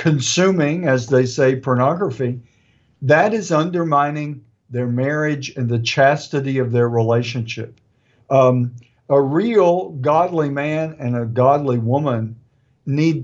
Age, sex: 50-69, male